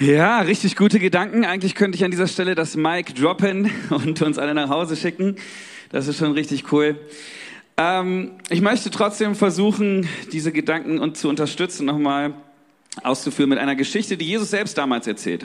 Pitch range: 135-205 Hz